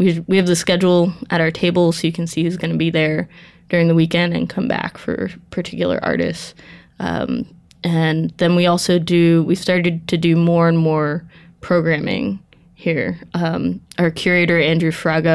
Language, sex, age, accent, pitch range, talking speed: English, female, 20-39, American, 160-175 Hz, 180 wpm